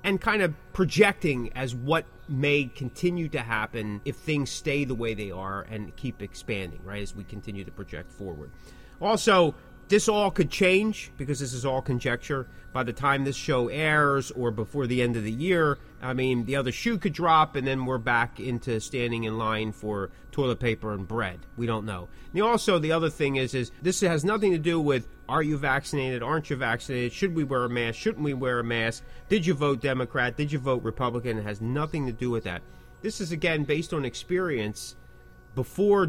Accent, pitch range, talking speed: American, 115-155 Hz, 205 wpm